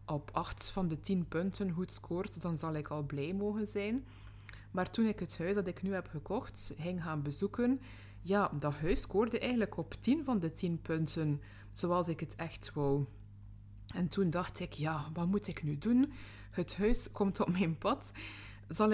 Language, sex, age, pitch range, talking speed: Dutch, female, 20-39, 150-190 Hz, 195 wpm